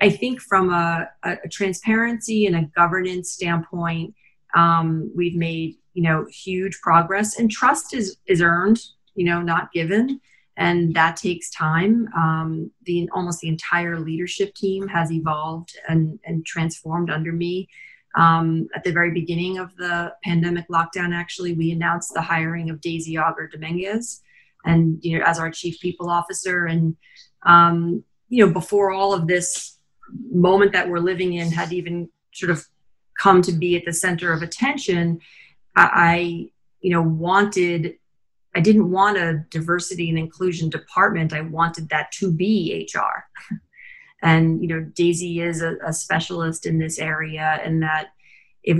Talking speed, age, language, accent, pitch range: 155 wpm, 30-49, English, American, 165-185 Hz